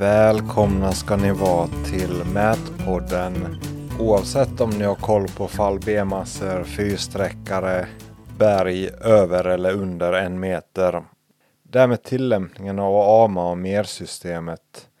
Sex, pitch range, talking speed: male, 90-105 Hz, 105 wpm